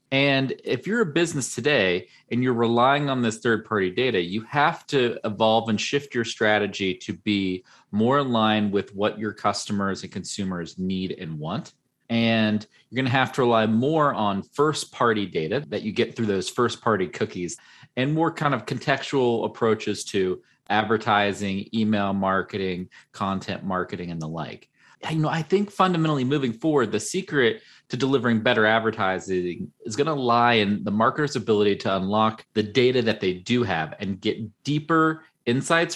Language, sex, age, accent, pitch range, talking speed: English, male, 30-49, American, 100-135 Hz, 170 wpm